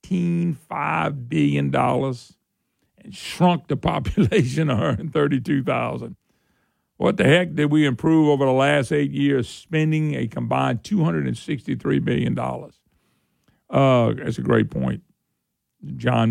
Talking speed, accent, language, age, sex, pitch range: 110 wpm, American, English, 50-69, male, 125-180 Hz